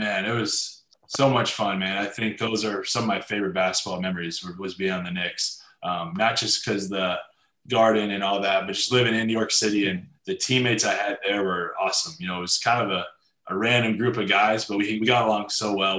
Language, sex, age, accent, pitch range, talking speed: English, male, 20-39, American, 95-110 Hz, 245 wpm